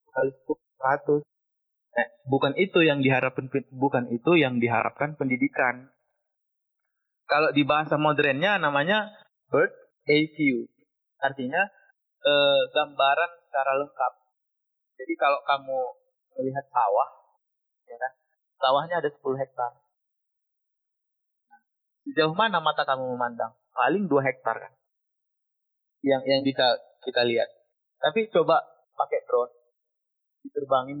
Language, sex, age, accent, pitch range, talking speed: Indonesian, male, 30-49, native, 130-175 Hz, 105 wpm